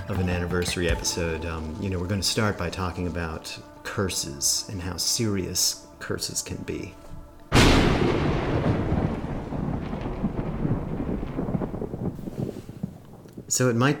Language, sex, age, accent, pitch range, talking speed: English, male, 40-59, American, 85-100 Hz, 105 wpm